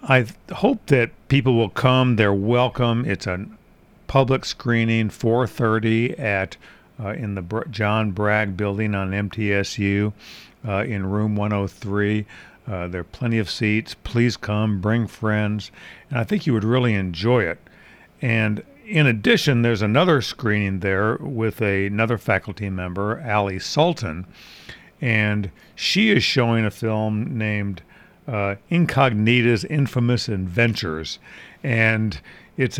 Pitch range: 100-120 Hz